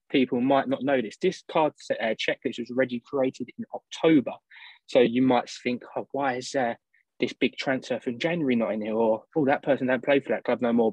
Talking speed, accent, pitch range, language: 230 wpm, British, 115-140 Hz, English